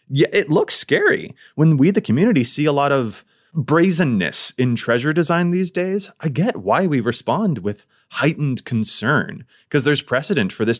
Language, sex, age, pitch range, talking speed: English, male, 30-49, 115-155 Hz, 170 wpm